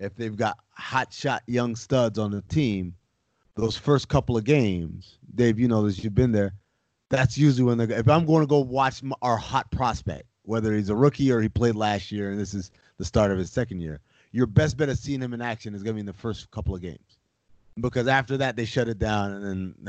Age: 30-49